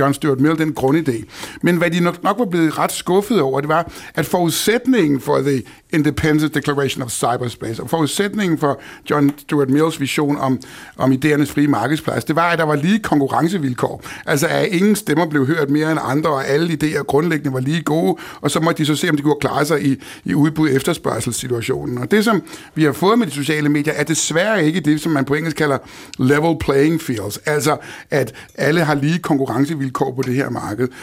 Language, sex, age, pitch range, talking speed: Danish, male, 60-79, 140-165 Hz, 210 wpm